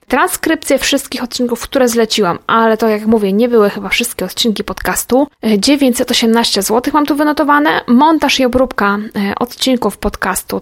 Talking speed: 140 wpm